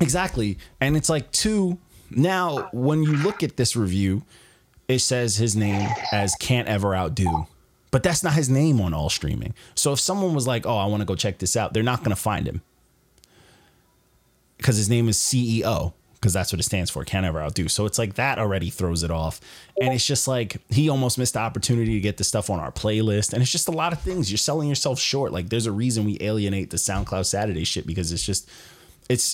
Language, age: English, 20-39